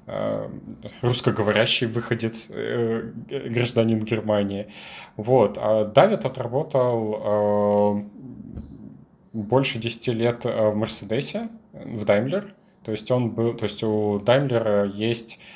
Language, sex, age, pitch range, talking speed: Russian, male, 20-39, 105-135 Hz, 90 wpm